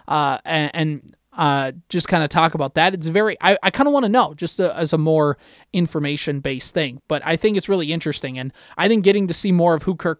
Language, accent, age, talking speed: English, American, 20-39, 230 wpm